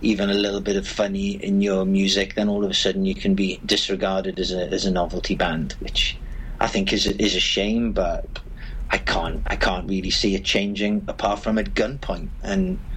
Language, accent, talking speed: English, British, 210 wpm